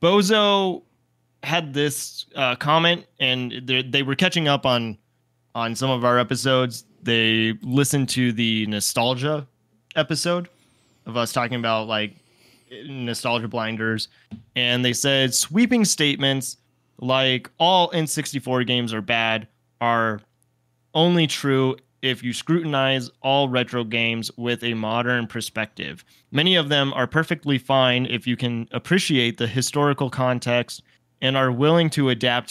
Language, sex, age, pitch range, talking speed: English, male, 20-39, 115-145 Hz, 135 wpm